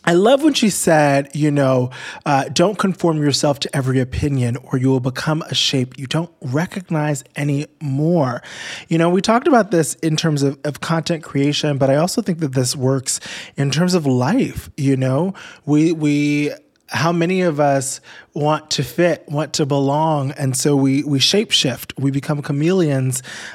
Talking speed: 180 wpm